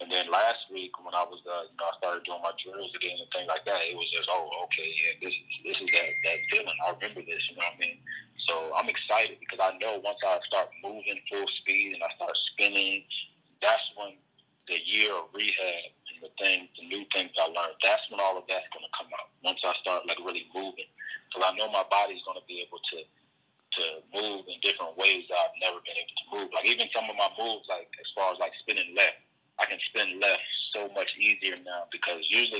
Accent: American